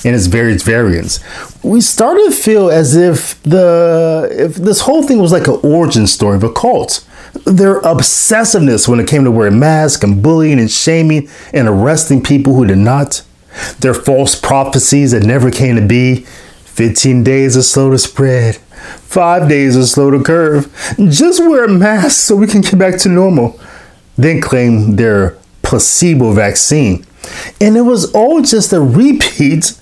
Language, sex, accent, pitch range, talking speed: English, male, American, 115-180 Hz, 170 wpm